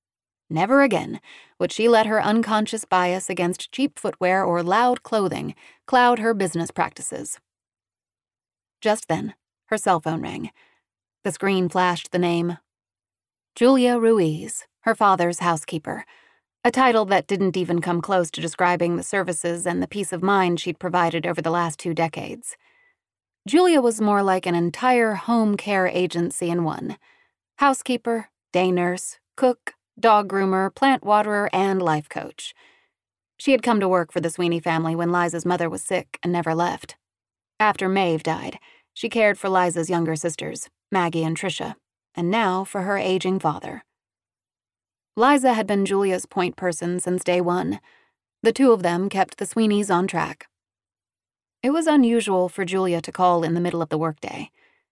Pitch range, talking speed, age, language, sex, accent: 170-220 Hz, 160 wpm, 30-49, English, female, American